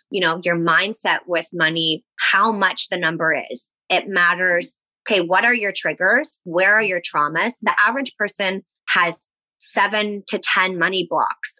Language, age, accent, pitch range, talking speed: English, 20-39, American, 170-205 Hz, 160 wpm